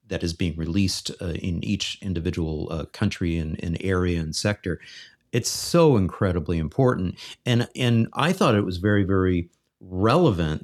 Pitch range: 85-115 Hz